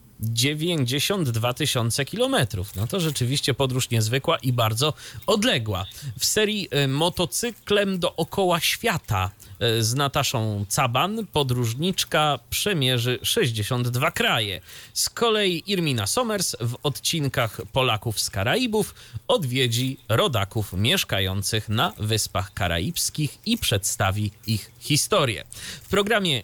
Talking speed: 100 wpm